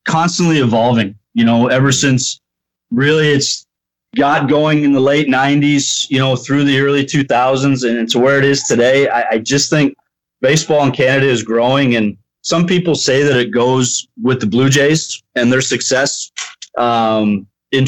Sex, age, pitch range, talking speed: male, 30-49, 115-140 Hz, 170 wpm